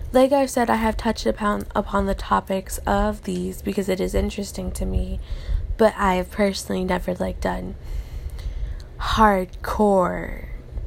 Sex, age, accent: female, 20-39, American